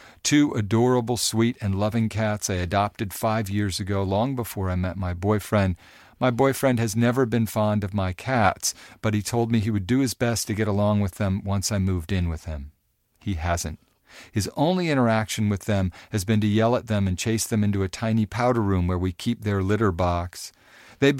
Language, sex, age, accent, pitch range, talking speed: English, male, 50-69, American, 100-120 Hz, 210 wpm